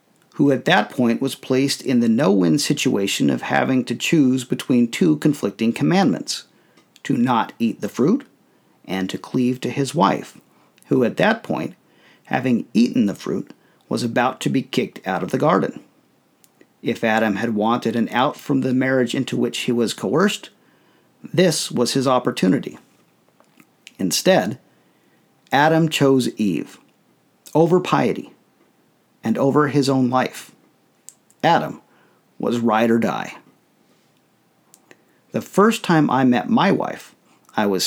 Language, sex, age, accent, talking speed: English, male, 50-69, American, 140 wpm